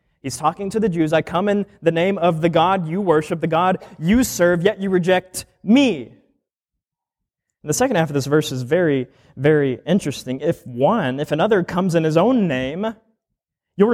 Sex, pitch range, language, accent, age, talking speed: male, 125-180 Hz, English, American, 20-39, 185 wpm